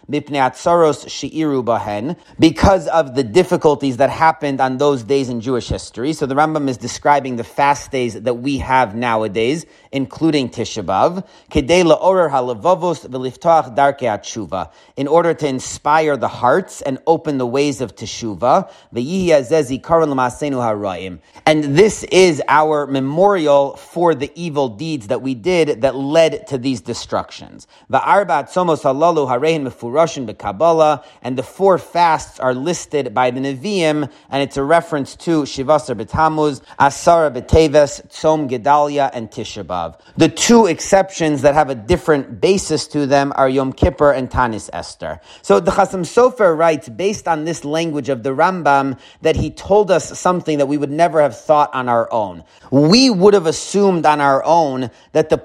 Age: 30-49